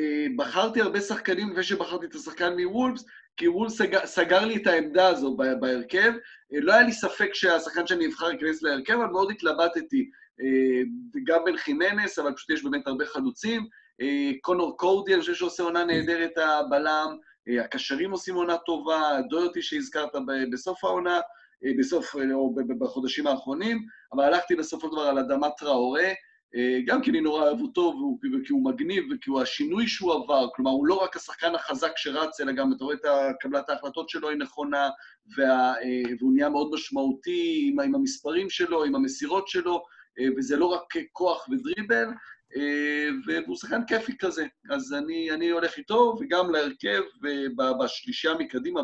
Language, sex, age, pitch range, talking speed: Hebrew, male, 30-49, 140-235 Hz, 150 wpm